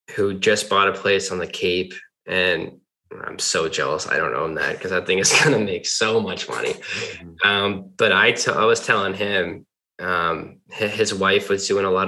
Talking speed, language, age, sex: 205 wpm, English, 20-39, male